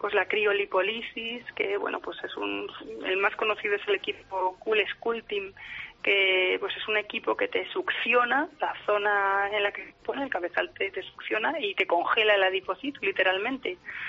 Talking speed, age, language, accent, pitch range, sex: 180 wpm, 20-39, Spanish, Spanish, 185-240 Hz, female